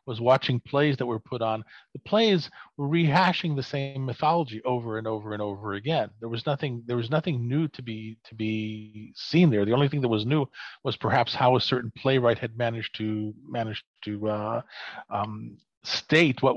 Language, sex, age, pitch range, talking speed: English, male, 40-59, 115-150 Hz, 195 wpm